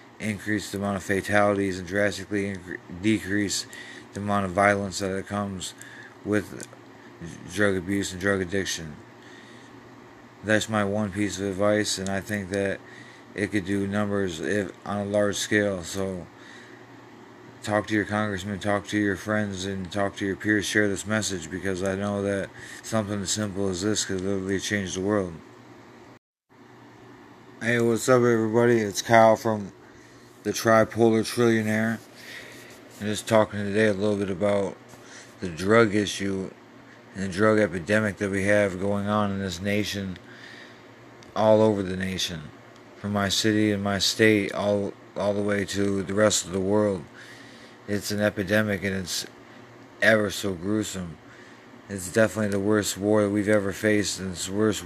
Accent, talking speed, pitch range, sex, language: American, 155 wpm, 95-105 Hz, male, English